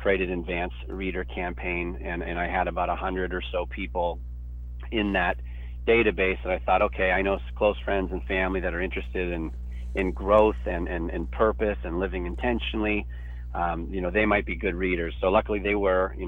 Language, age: English, 40-59